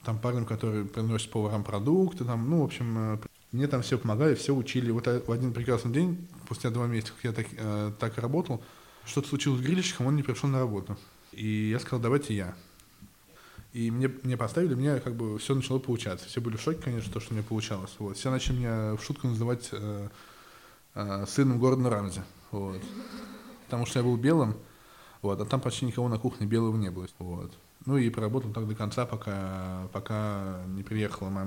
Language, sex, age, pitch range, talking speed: Russian, male, 20-39, 105-130 Hz, 200 wpm